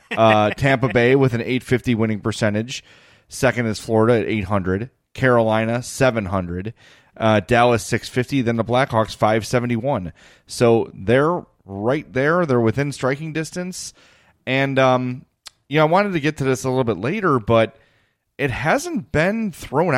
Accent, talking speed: American, 145 wpm